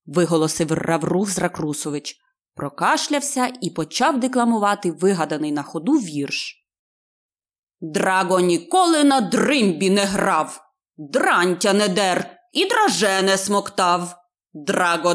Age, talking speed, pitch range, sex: 20-39, 100 wpm, 195-280 Hz, female